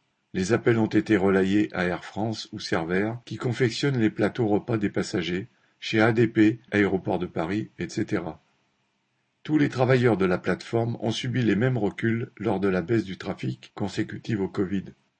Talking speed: 170 wpm